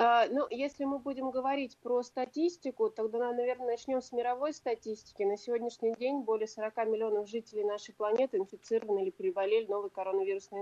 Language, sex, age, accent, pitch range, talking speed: Russian, female, 30-49, native, 210-255 Hz, 160 wpm